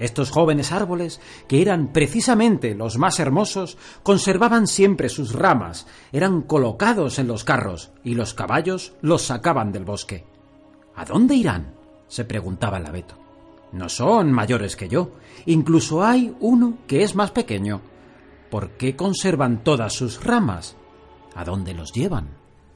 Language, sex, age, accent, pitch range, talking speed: Spanish, male, 40-59, Spanish, 115-195 Hz, 140 wpm